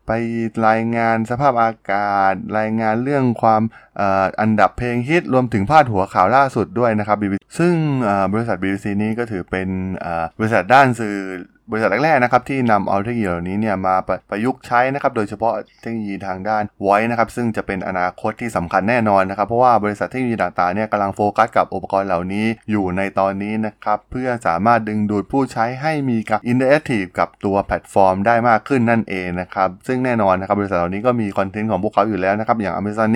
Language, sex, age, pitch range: Thai, male, 20-39, 95-115 Hz